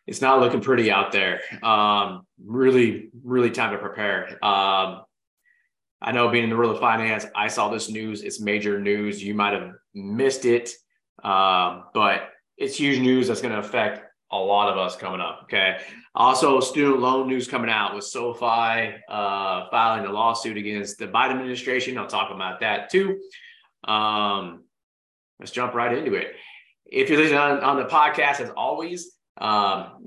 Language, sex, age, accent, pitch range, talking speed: English, male, 30-49, American, 105-135 Hz, 170 wpm